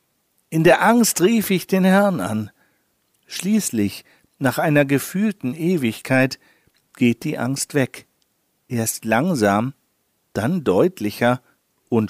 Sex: male